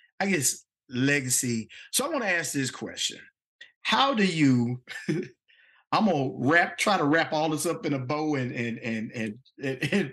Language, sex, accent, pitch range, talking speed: English, male, American, 110-145 Hz, 190 wpm